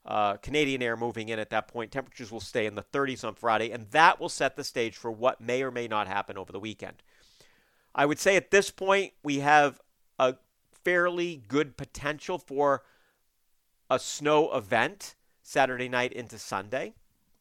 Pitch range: 120-165 Hz